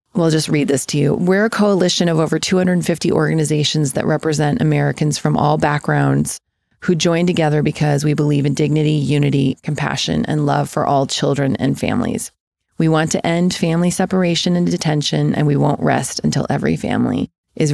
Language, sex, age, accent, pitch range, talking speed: English, female, 30-49, American, 150-180 Hz, 175 wpm